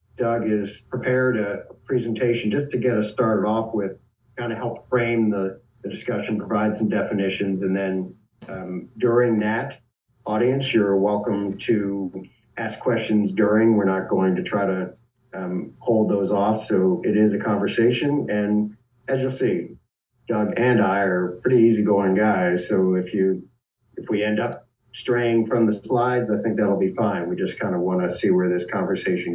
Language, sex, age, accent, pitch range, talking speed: English, male, 50-69, American, 100-120 Hz, 175 wpm